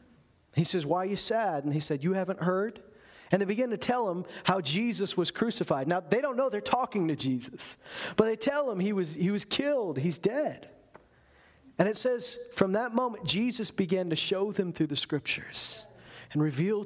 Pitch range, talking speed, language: 170-225 Hz, 200 wpm, English